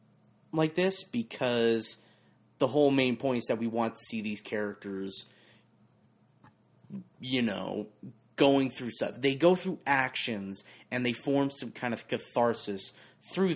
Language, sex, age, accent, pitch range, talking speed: English, male, 30-49, American, 115-155 Hz, 140 wpm